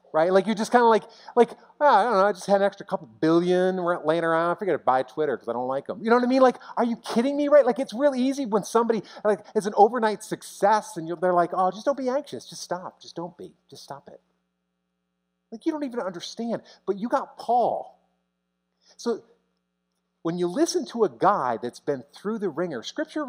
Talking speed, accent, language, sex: 235 wpm, American, English, male